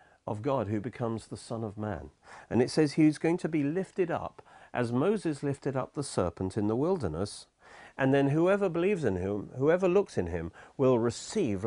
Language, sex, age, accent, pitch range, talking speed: English, male, 50-69, British, 100-155 Hz, 195 wpm